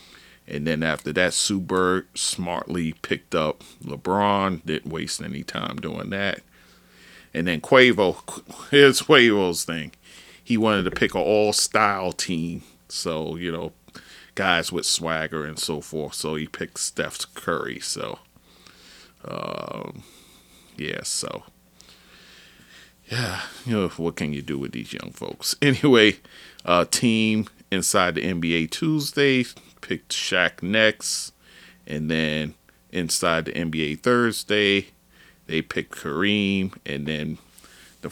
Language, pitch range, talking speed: English, 80-105 Hz, 125 wpm